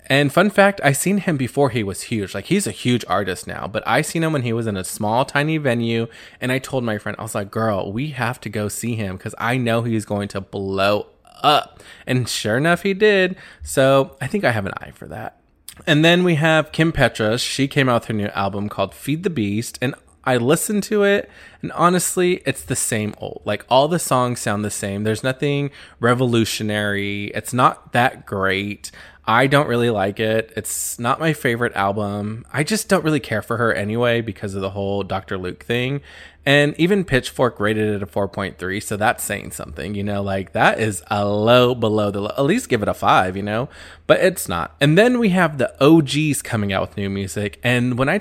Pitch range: 105-140 Hz